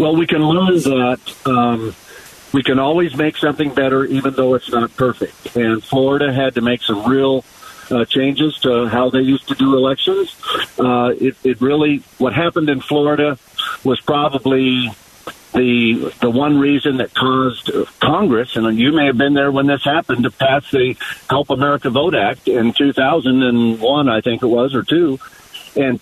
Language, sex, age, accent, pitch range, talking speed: English, male, 50-69, American, 125-150 Hz, 175 wpm